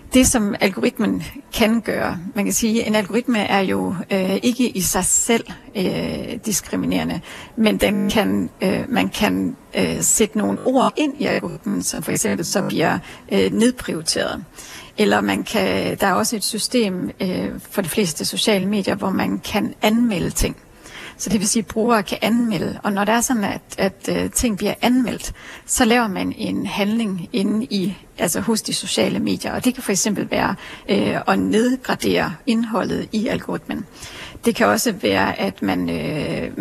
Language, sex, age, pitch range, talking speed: Danish, female, 40-59, 200-235 Hz, 180 wpm